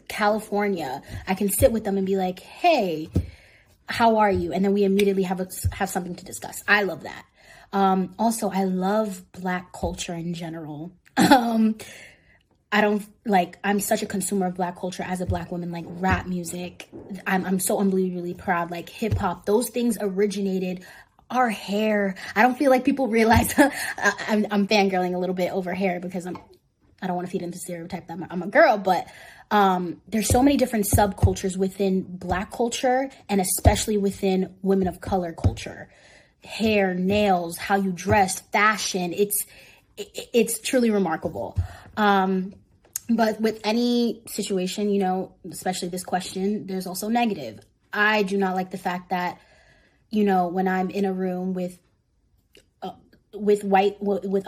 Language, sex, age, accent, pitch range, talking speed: English, female, 20-39, American, 180-210 Hz, 165 wpm